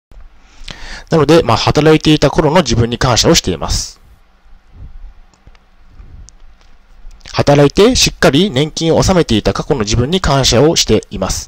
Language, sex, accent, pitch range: Japanese, male, native, 100-155 Hz